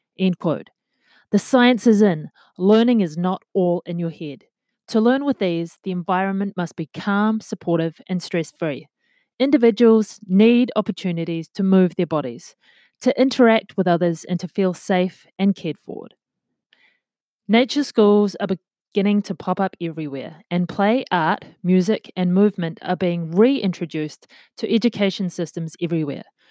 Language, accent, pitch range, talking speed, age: English, Australian, 175-220 Hz, 140 wpm, 30-49